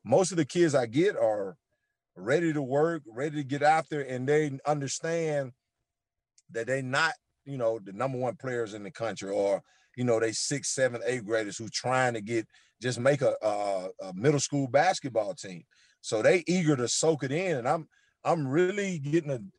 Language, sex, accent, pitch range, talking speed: English, male, American, 115-150 Hz, 195 wpm